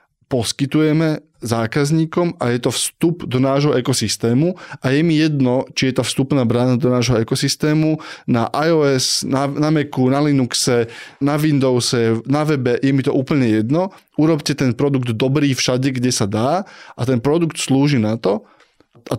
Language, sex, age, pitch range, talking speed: Slovak, male, 20-39, 120-150 Hz, 165 wpm